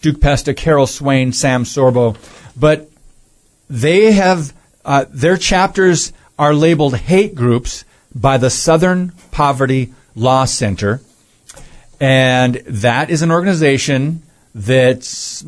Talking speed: 110 wpm